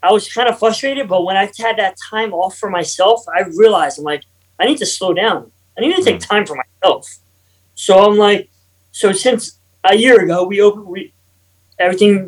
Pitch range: 145-210 Hz